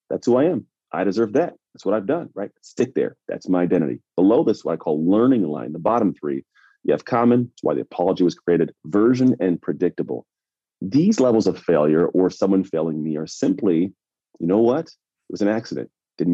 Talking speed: 205 wpm